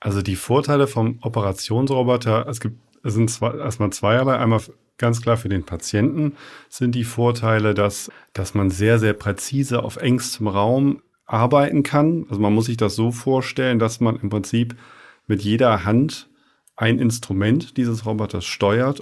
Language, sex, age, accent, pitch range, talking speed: German, male, 40-59, German, 105-125 Hz, 160 wpm